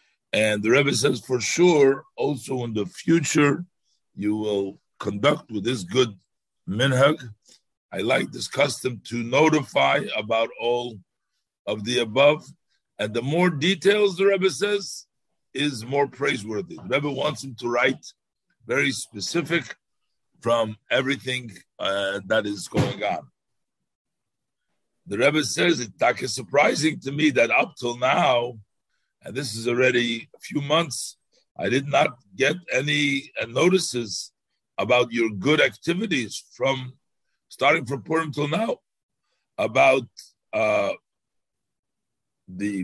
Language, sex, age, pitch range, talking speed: English, male, 50-69, 115-150 Hz, 125 wpm